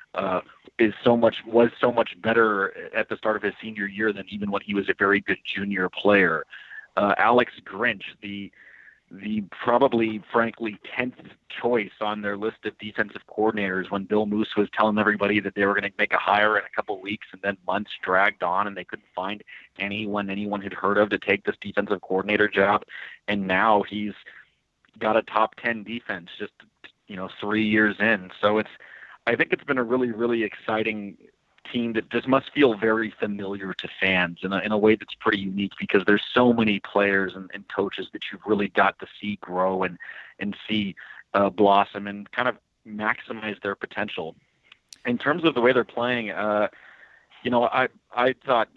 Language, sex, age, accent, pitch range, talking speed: English, male, 30-49, American, 100-115 Hz, 195 wpm